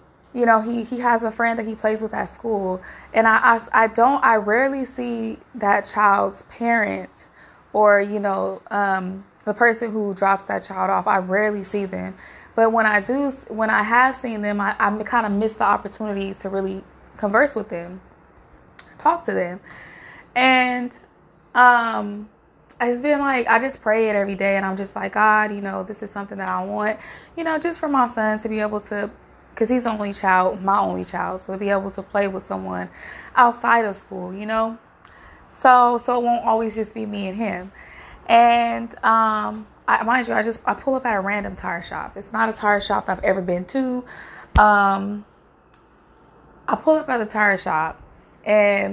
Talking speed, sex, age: 195 wpm, female, 20-39